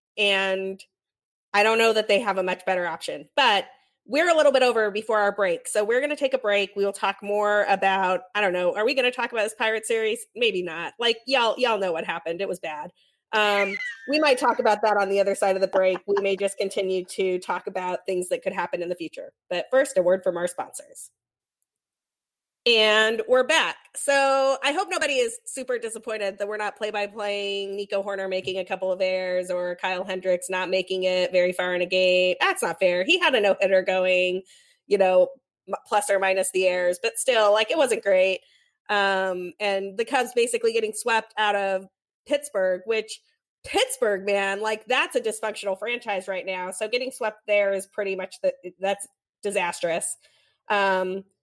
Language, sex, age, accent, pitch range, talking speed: English, female, 30-49, American, 190-240 Hz, 205 wpm